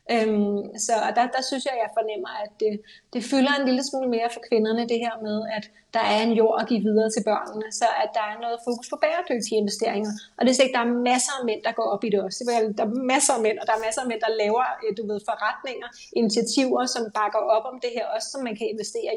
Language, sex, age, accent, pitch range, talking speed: Danish, female, 30-49, native, 215-250 Hz, 255 wpm